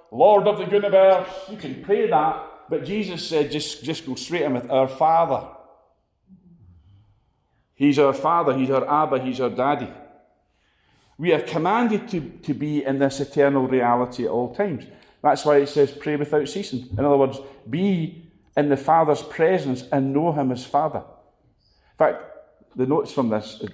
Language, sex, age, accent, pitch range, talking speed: English, male, 40-59, British, 125-175 Hz, 170 wpm